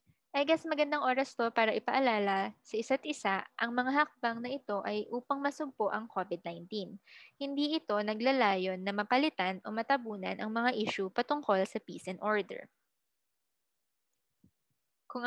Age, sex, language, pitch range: 20-39, female, Filipino, 205-280 Hz